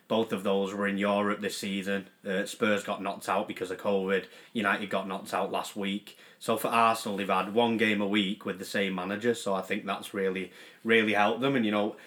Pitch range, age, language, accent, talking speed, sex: 95-115 Hz, 20-39, English, British, 230 wpm, male